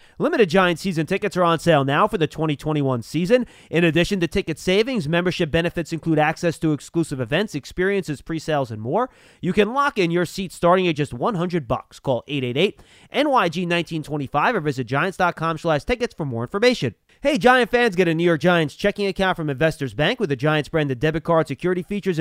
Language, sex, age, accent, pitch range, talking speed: English, male, 30-49, American, 150-195 Hz, 185 wpm